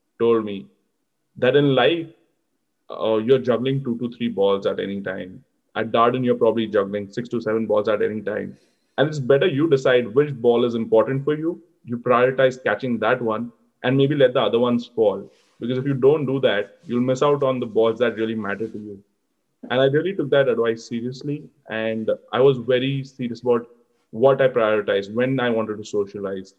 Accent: Indian